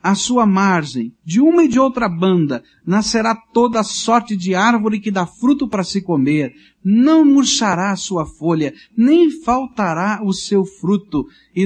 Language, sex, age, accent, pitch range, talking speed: Portuguese, male, 60-79, Brazilian, 160-220 Hz, 160 wpm